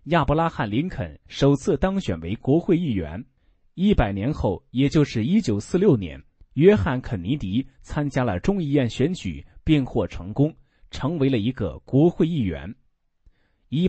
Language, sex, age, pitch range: Chinese, male, 30-49, 110-165 Hz